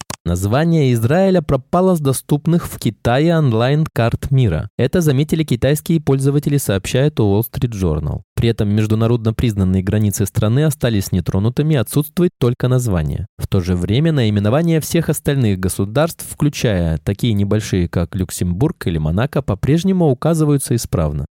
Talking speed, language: 125 wpm, Russian